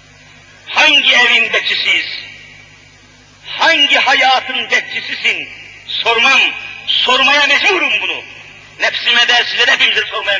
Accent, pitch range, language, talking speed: native, 210-320 Hz, Turkish, 85 wpm